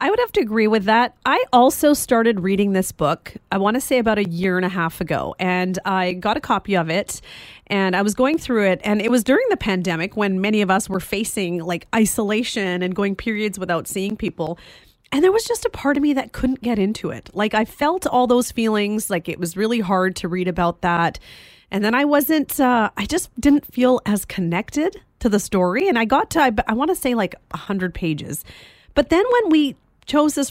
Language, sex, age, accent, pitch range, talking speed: English, female, 30-49, American, 185-250 Hz, 230 wpm